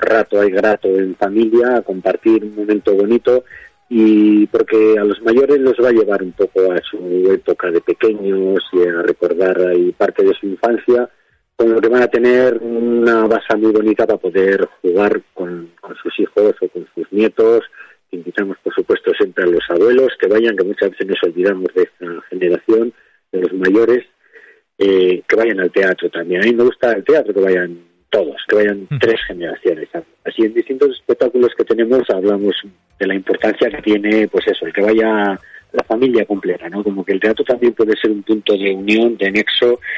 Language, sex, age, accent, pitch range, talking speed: Spanish, male, 40-59, Spanish, 100-140 Hz, 190 wpm